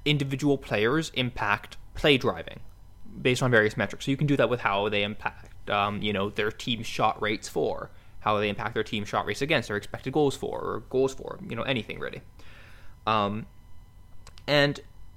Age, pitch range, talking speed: 20-39, 100-130 Hz, 185 wpm